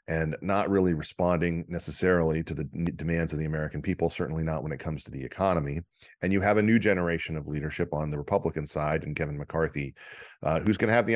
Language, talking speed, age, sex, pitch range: English, 215 wpm, 40-59, male, 80-90 Hz